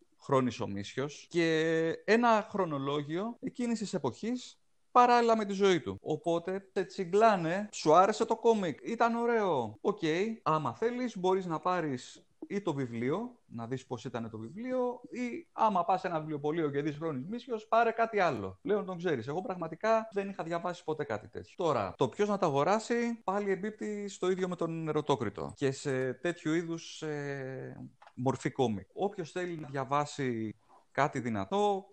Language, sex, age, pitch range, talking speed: Greek, male, 30-49, 135-200 Hz, 165 wpm